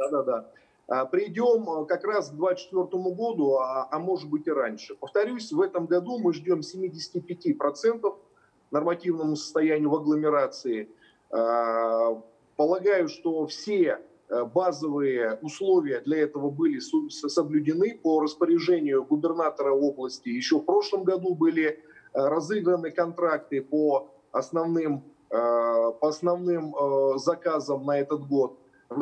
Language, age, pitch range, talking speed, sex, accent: Russian, 30-49, 145-185 Hz, 110 wpm, male, native